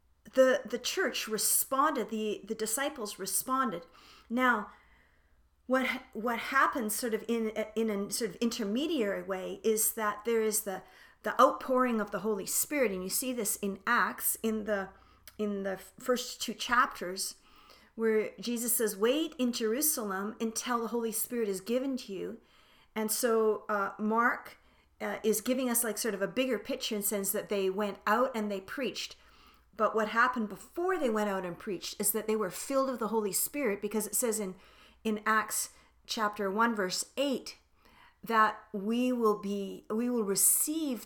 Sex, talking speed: female, 175 wpm